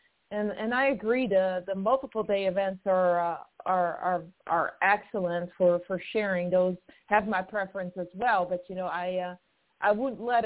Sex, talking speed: female, 185 wpm